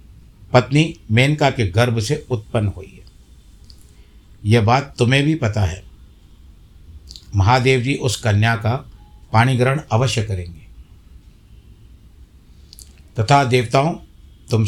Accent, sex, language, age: native, male, Hindi, 60-79